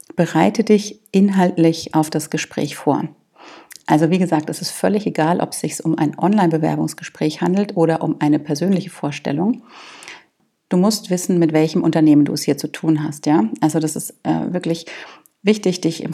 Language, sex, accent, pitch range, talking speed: German, female, German, 160-180 Hz, 175 wpm